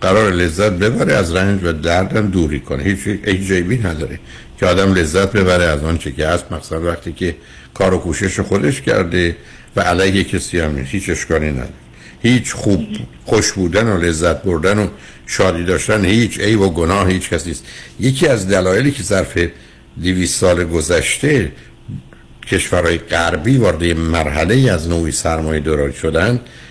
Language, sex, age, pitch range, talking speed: Persian, male, 60-79, 80-115 Hz, 155 wpm